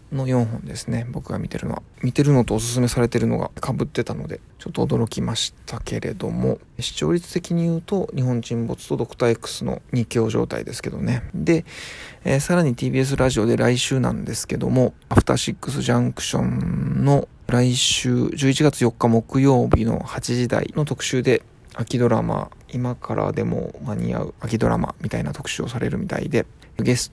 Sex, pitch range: male, 115-140 Hz